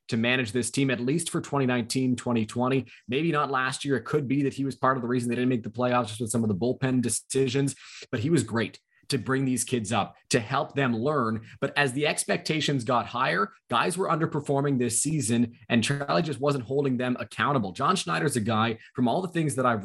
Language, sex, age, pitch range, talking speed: English, male, 20-39, 120-140 Hz, 225 wpm